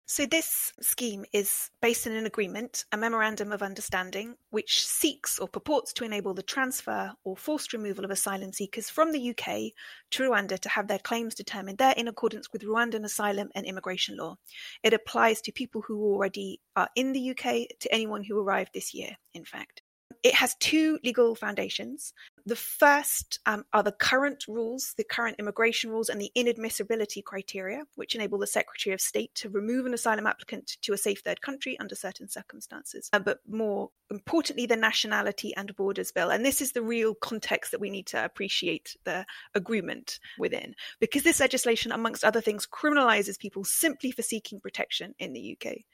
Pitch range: 205-255 Hz